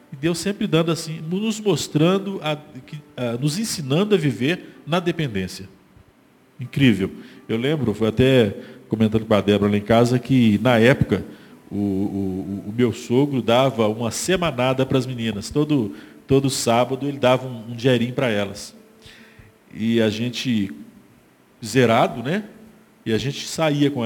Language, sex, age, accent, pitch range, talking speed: Portuguese, male, 40-59, Brazilian, 115-170 Hz, 150 wpm